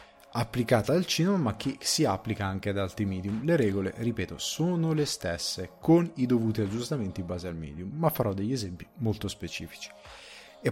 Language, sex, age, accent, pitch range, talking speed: Italian, male, 30-49, native, 95-125 Hz, 180 wpm